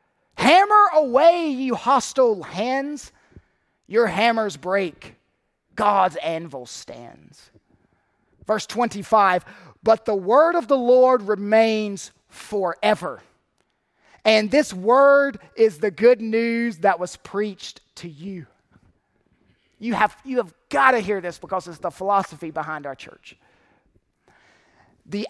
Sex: male